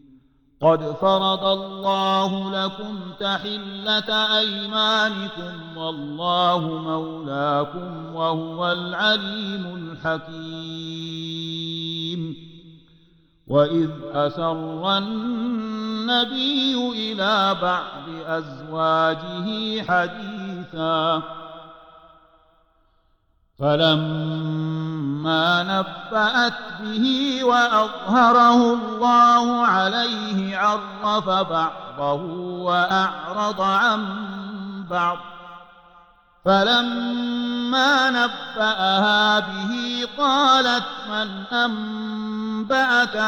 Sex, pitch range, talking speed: male, 160-215 Hz, 50 wpm